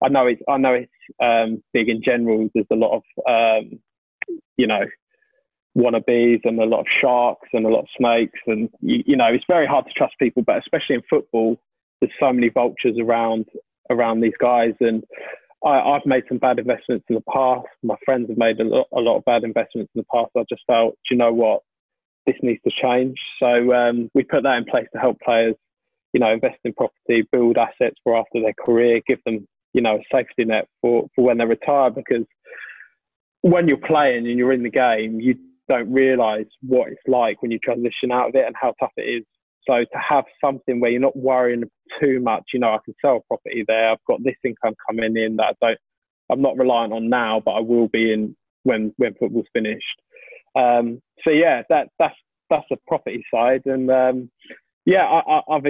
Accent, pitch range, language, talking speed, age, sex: British, 115-130 Hz, English, 215 wpm, 20-39, male